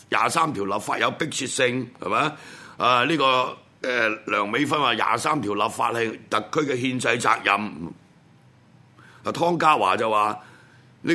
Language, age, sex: Chinese, 60-79, male